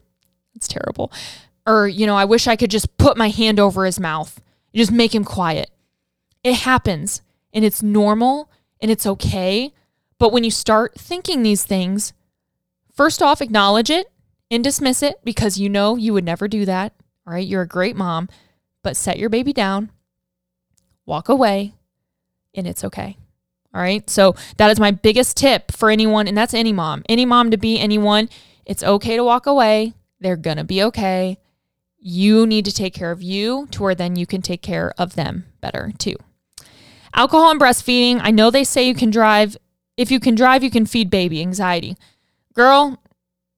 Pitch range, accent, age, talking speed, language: 190-235 Hz, American, 20-39, 185 wpm, English